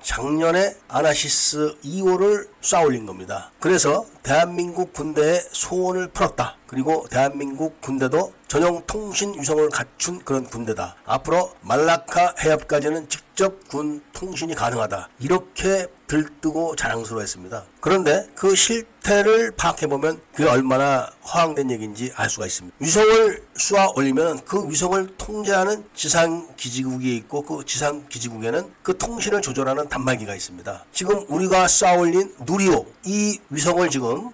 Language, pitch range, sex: Korean, 135-185 Hz, male